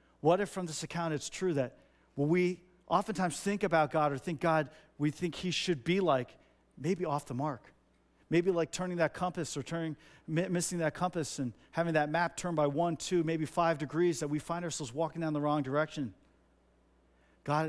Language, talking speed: English, 195 wpm